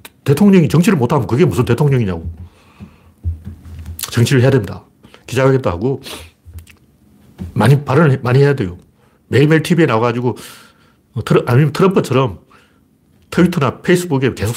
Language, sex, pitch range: Korean, male, 110-180 Hz